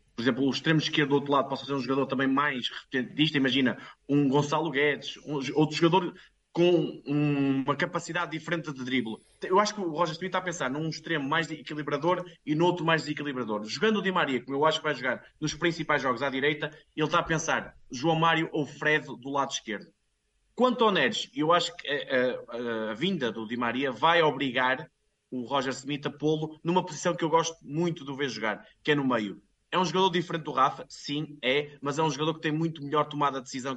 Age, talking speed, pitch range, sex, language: 20-39, 220 wpm, 140-170 Hz, male, Portuguese